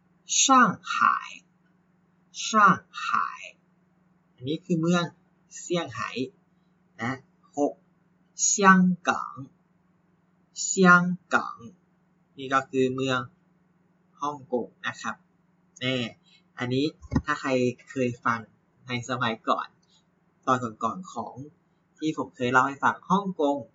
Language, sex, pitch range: Thai, male, 130-180 Hz